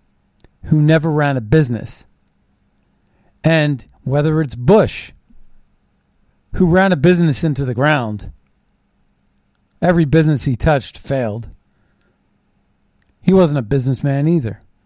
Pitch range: 120-160 Hz